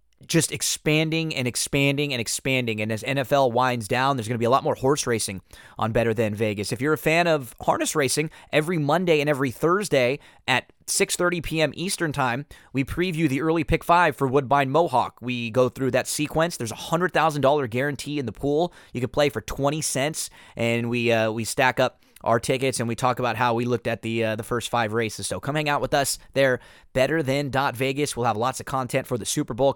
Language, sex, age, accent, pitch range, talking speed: English, male, 20-39, American, 115-150 Hz, 220 wpm